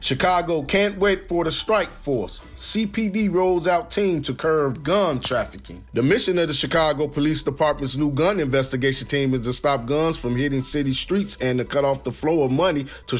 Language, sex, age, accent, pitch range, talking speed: English, male, 30-49, American, 140-170 Hz, 195 wpm